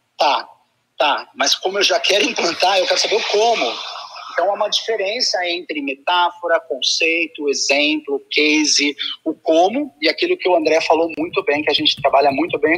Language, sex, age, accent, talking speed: Portuguese, male, 30-49, Brazilian, 180 wpm